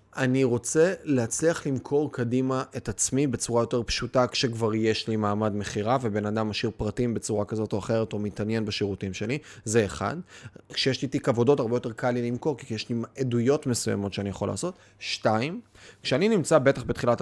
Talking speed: 180 wpm